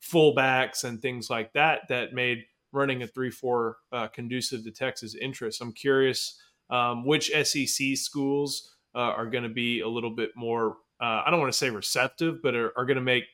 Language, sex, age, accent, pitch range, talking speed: English, male, 30-49, American, 120-140 Hz, 185 wpm